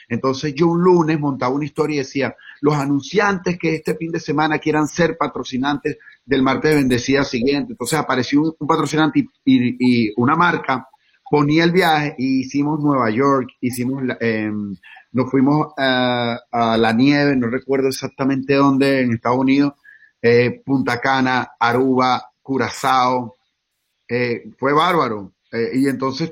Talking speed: 155 wpm